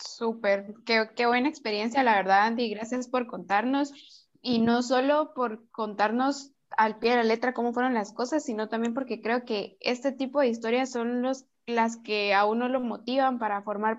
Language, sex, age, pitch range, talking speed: Spanish, female, 10-29, 210-245 Hz, 190 wpm